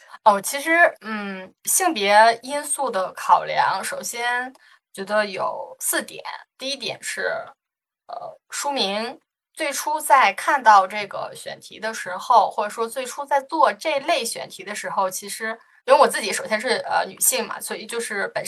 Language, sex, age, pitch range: Chinese, female, 20-39, 210-285 Hz